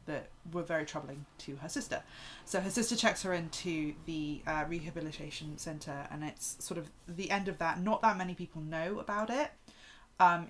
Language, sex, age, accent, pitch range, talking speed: English, female, 20-39, British, 160-185 Hz, 185 wpm